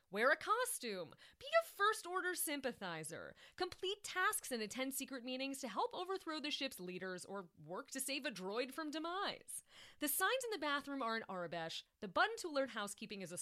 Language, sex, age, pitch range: English, female, 30-49, 195-325 Hz